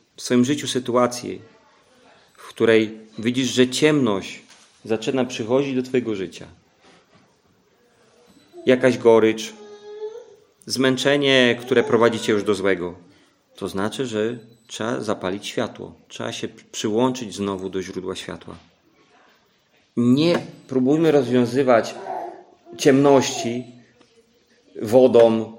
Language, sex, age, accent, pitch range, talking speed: Polish, male, 40-59, native, 110-135 Hz, 95 wpm